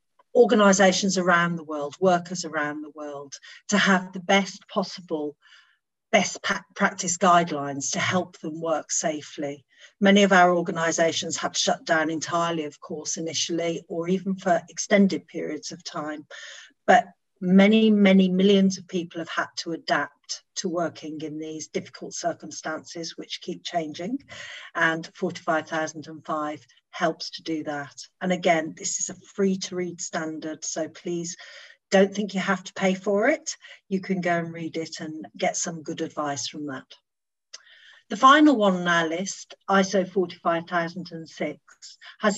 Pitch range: 160-195 Hz